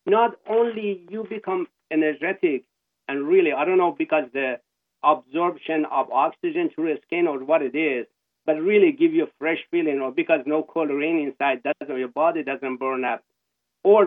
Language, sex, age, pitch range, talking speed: English, male, 50-69, 140-230 Hz, 175 wpm